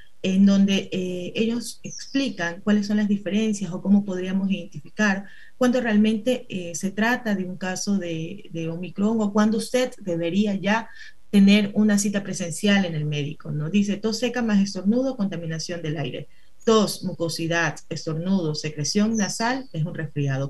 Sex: female